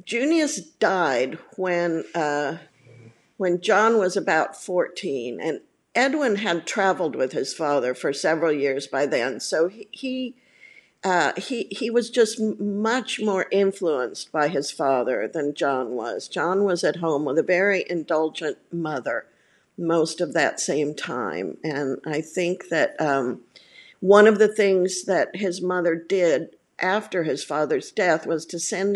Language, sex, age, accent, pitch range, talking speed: English, female, 50-69, American, 155-210 Hz, 150 wpm